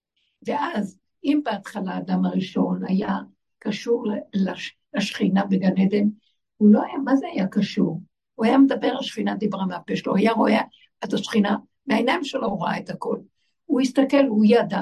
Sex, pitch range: female, 210-285 Hz